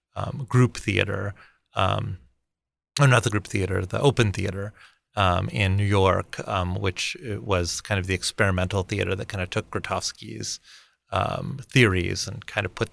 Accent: American